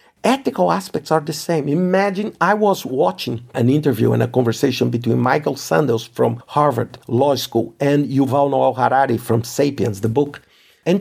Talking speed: 165 wpm